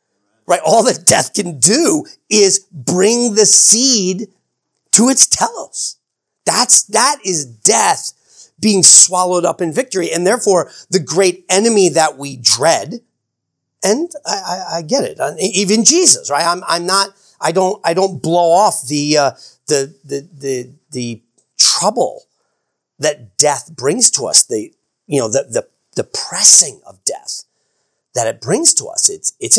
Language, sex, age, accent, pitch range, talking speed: English, male, 40-59, American, 150-230 Hz, 160 wpm